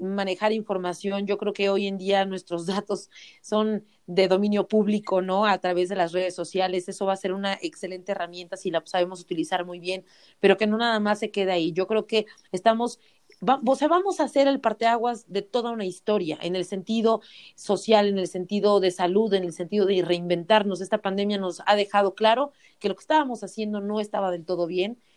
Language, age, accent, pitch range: Spanish, 40-59, Mexican, 185-215 Hz